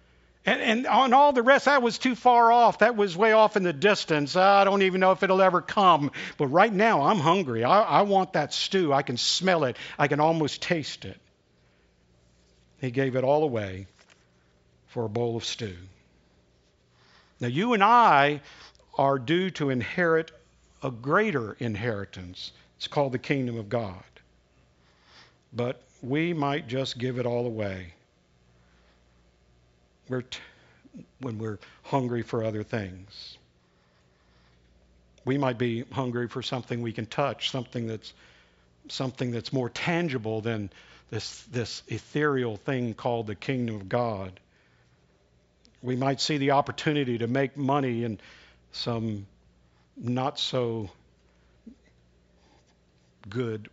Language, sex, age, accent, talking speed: English, male, 50-69, American, 140 wpm